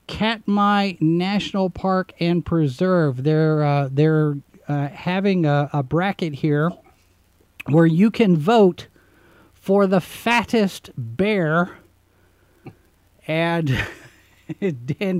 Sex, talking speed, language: male, 95 wpm, English